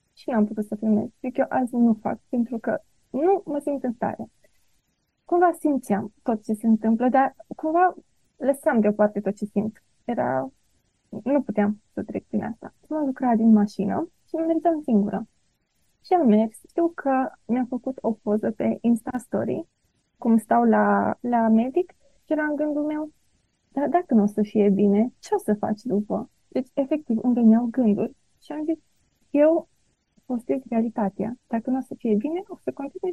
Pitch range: 220-305 Hz